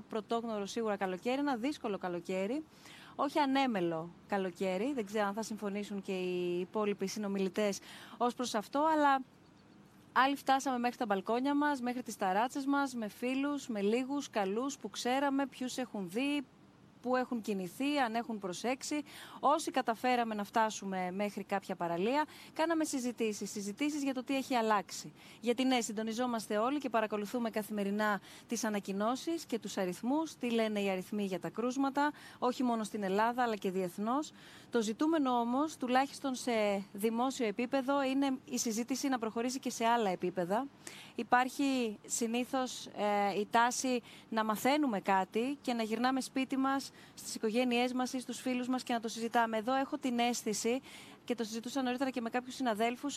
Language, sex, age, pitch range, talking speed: Greek, female, 20-39, 210-265 Hz, 160 wpm